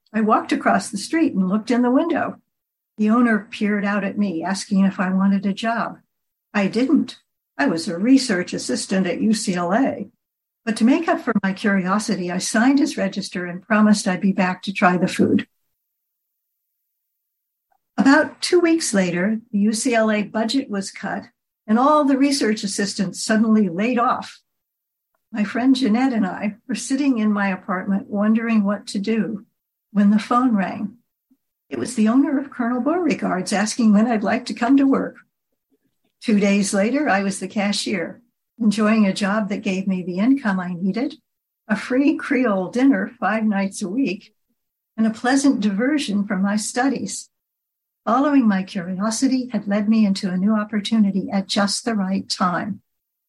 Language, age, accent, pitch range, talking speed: English, 60-79, American, 200-245 Hz, 165 wpm